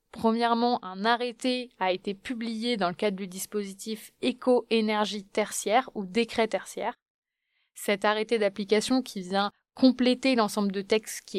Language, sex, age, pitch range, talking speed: French, female, 20-39, 205-245 Hz, 135 wpm